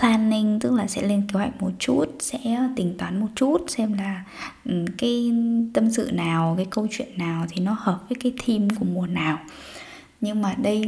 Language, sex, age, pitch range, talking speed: Vietnamese, female, 10-29, 185-230 Hz, 200 wpm